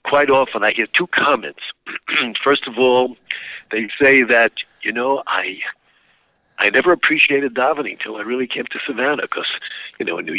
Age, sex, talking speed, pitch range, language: 50-69, male, 175 wpm, 125-170 Hz, English